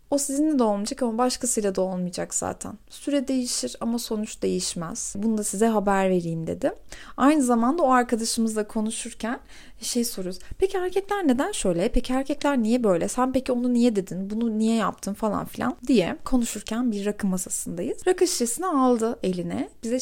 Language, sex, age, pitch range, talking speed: Turkish, female, 30-49, 190-250 Hz, 160 wpm